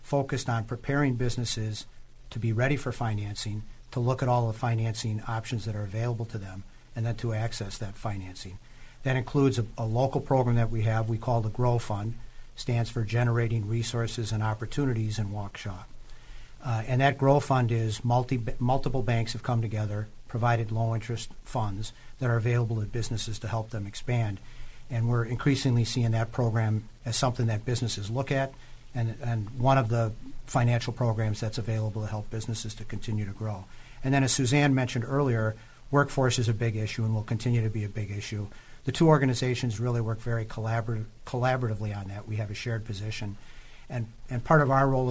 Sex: male